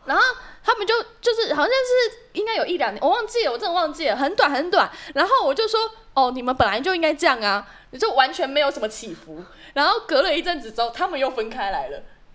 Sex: female